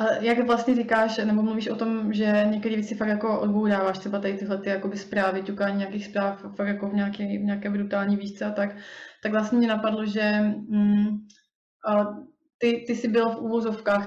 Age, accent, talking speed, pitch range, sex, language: 20-39, native, 175 wpm, 205-225 Hz, female, Czech